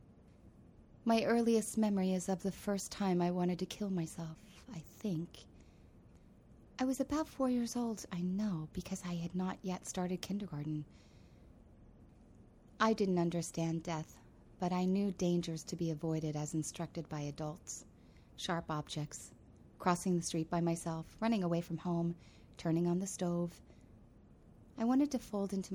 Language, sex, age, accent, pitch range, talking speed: English, female, 30-49, American, 160-195 Hz, 150 wpm